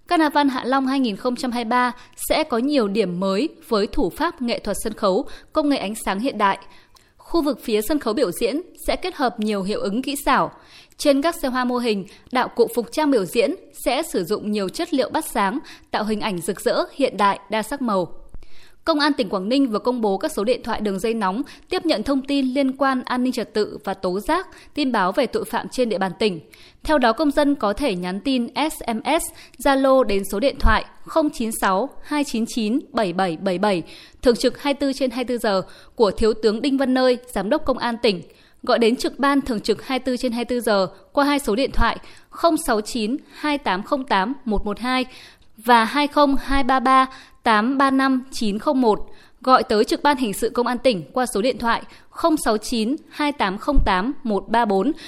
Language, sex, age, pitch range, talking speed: Vietnamese, female, 20-39, 215-280 Hz, 190 wpm